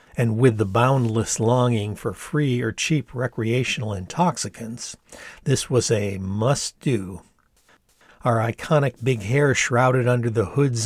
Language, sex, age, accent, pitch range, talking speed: English, male, 50-69, American, 110-125 Hz, 125 wpm